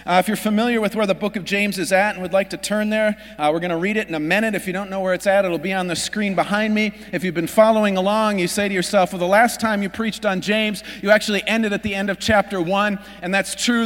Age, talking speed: 40-59, 305 wpm